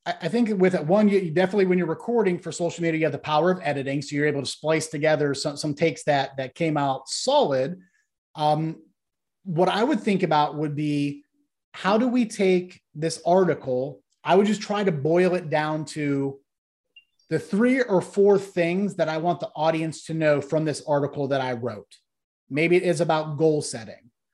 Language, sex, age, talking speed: English, male, 30-49, 195 wpm